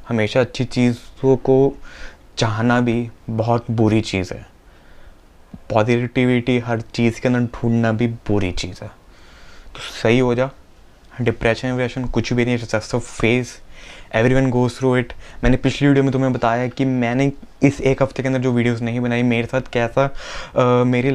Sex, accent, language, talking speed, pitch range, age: male, native, Hindi, 160 wpm, 115-130 Hz, 20-39